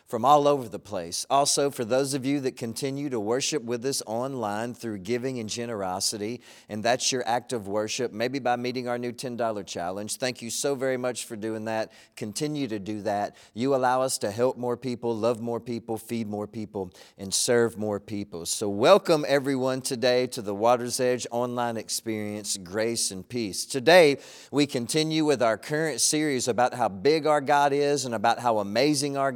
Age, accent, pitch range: 40-59, American, 115-145 Hz